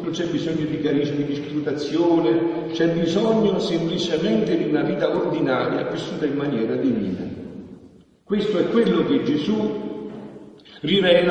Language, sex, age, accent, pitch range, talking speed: Italian, male, 50-69, native, 115-165 Hz, 120 wpm